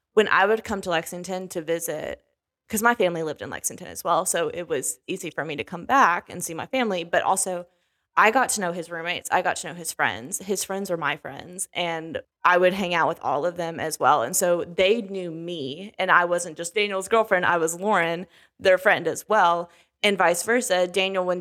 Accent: American